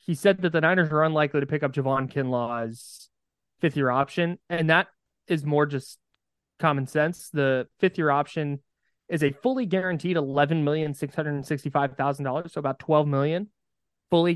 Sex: male